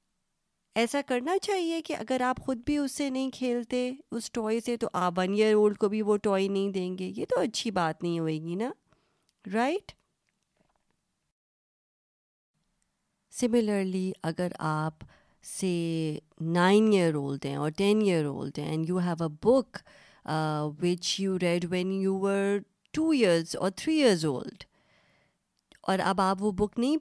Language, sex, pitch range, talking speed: Urdu, female, 175-235 Hz, 160 wpm